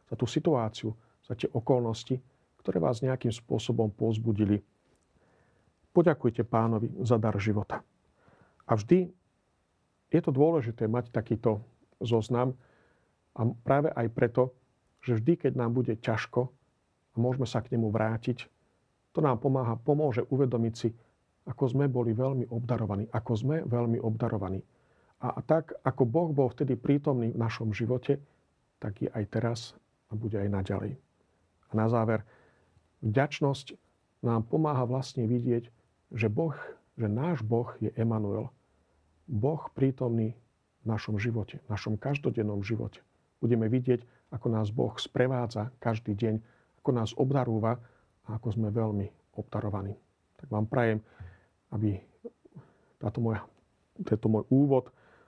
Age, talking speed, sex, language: 40-59, 130 wpm, male, Slovak